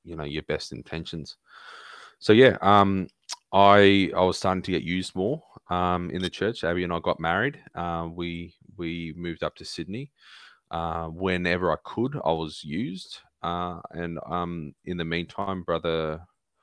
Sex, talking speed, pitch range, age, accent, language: male, 165 wpm, 80-90 Hz, 20-39, Australian, English